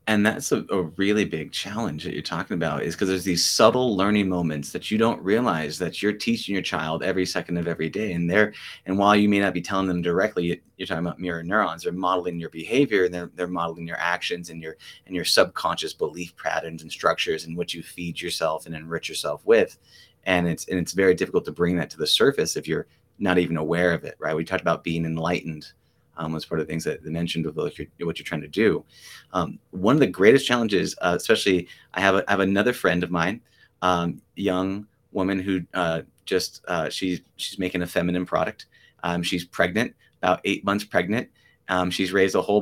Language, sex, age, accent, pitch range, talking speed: English, male, 30-49, American, 85-100 Hz, 220 wpm